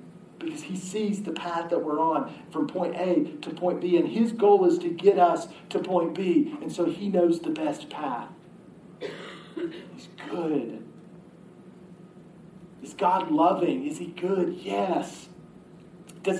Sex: male